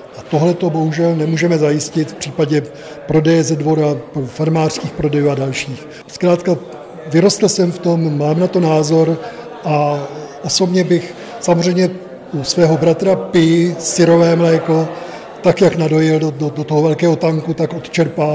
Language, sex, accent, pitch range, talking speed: Czech, male, native, 155-175 Hz, 145 wpm